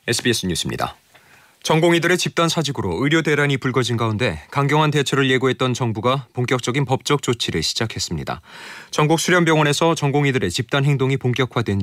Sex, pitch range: male, 115-145 Hz